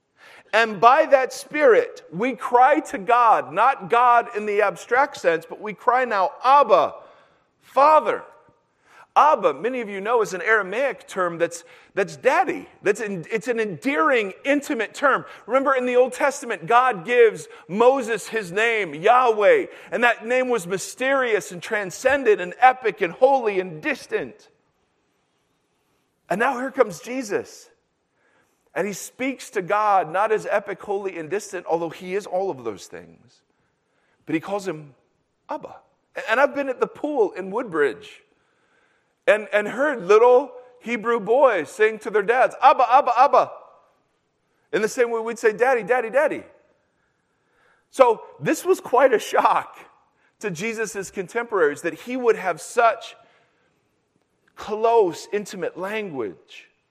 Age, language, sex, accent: 40-59, English, male, American